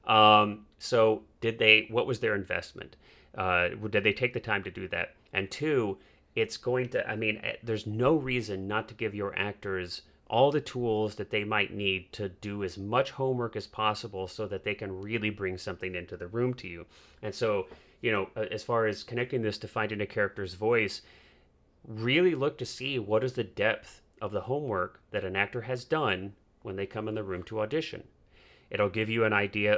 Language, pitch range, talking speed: English, 95-125 Hz, 205 wpm